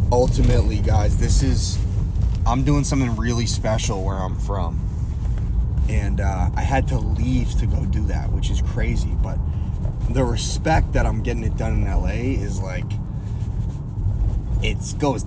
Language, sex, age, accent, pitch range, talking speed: English, male, 20-39, American, 85-110 Hz, 155 wpm